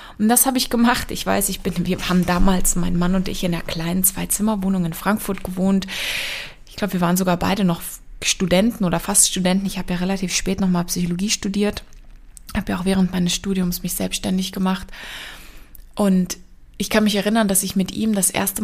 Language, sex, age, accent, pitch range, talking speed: German, female, 20-39, German, 185-215 Hz, 200 wpm